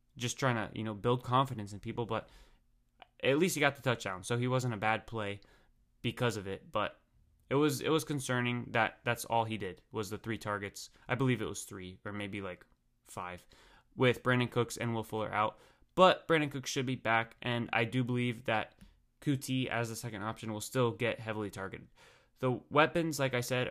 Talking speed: 210 wpm